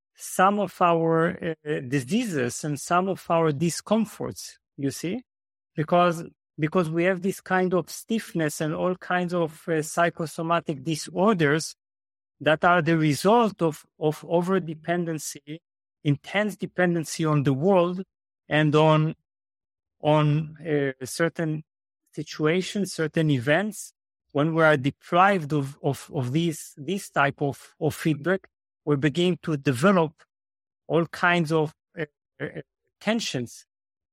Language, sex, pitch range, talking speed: English, male, 150-185 Hz, 120 wpm